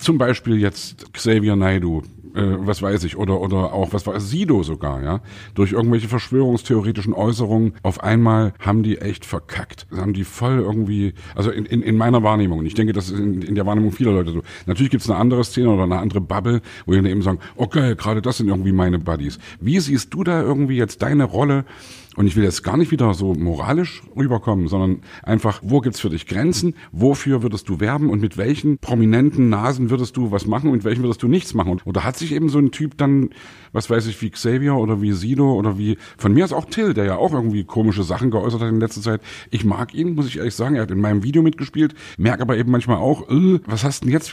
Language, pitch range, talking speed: German, 95-125 Hz, 235 wpm